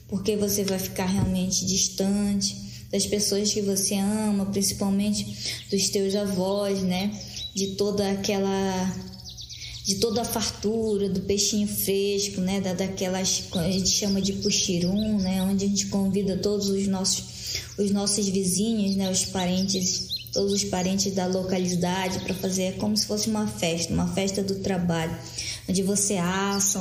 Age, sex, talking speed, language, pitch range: 10-29, female, 155 wpm, Portuguese, 185-200 Hz